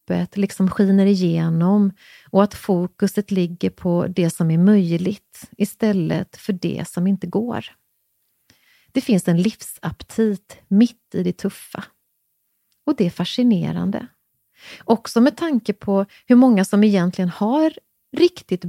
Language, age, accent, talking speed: English, 30-49, Swedish, 130 wpm